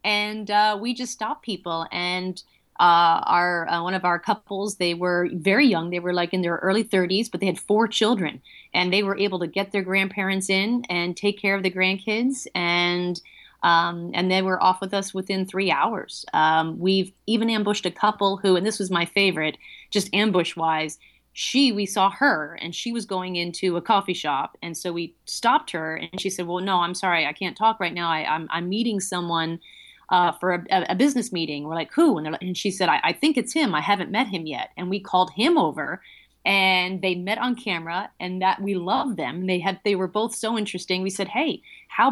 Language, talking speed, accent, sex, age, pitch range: English, 220 wpm, American, female, 30-49, 175-210 Hz